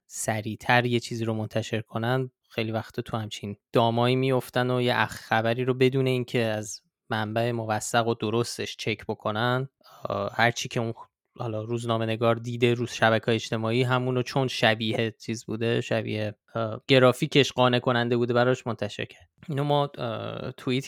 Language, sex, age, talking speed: Persian, male, 20-39, 150 wpm